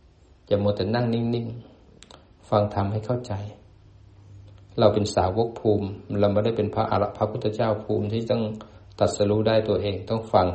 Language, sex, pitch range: Thai, male, 90-110 Hz